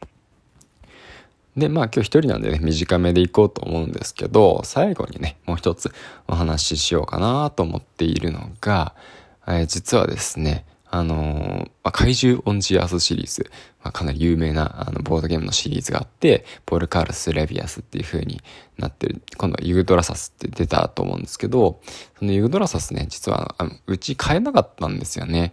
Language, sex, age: Japanese, male, 20-39